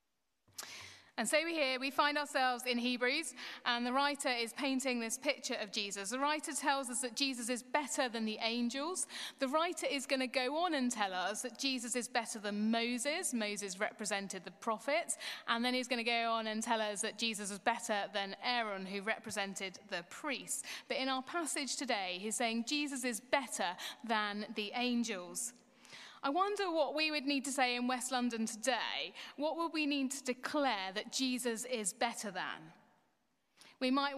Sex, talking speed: female, 190 wpm